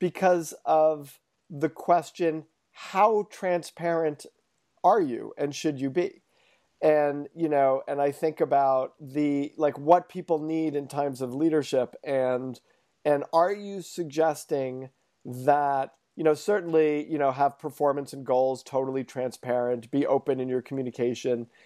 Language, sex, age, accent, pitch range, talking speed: English, male, 40-59, American, 130-160 Hz, 140 wpm